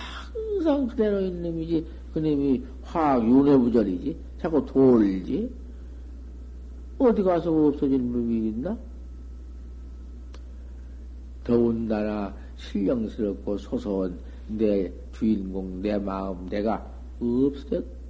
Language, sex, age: Korean, male, 50-69